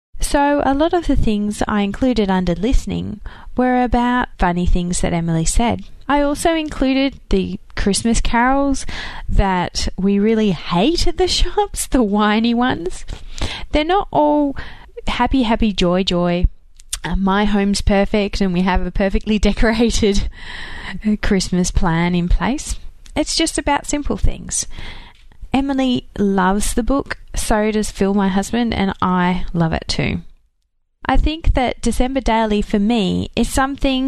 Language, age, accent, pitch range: English, 20-39, Australian, 185-255 Hz